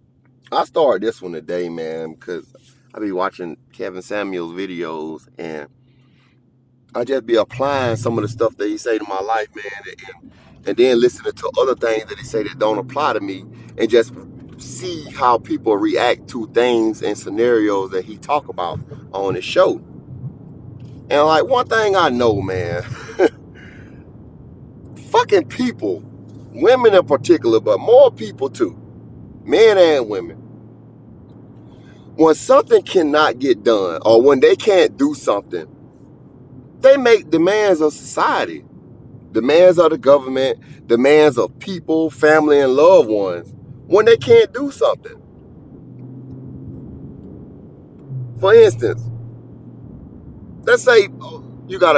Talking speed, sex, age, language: 135 wpm, male, 30-49, English